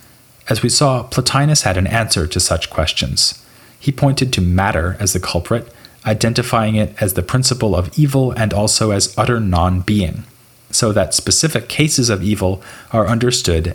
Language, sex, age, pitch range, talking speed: English, male, 30-49, 90-125 Hz, 160 wpm